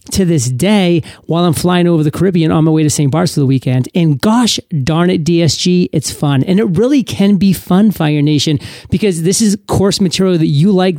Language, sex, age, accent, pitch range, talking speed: English, male, 30-49, American, 150-180 Hz, 225 wpm